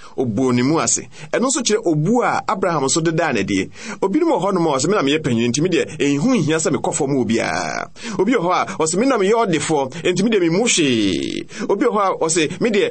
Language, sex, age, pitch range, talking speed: Hungarian, male, 30-49, 170-250 Hz, 180 wpm